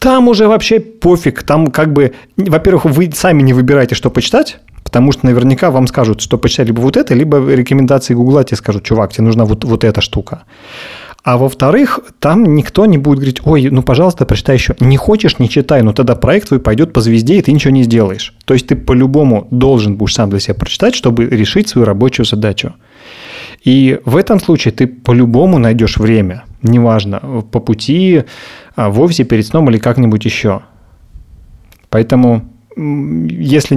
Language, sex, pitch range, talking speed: Russian, male, 115-145 Hz, 175 wpm